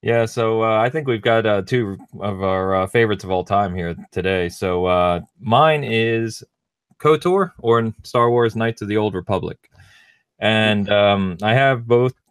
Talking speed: 180 wpm